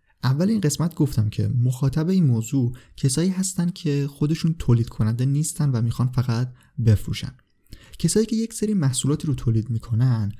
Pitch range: 115-145 Hz